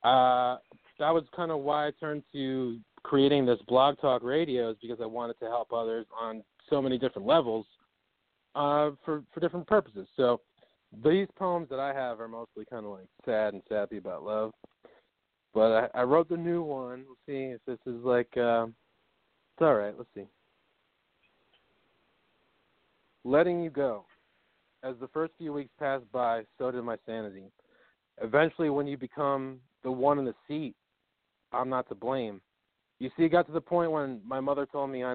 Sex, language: male, English